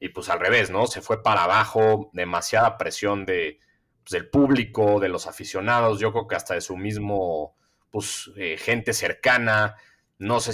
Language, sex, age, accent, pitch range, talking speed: Spanish, male, 30-49, Mexican, 100-125 Hz, 175 wpm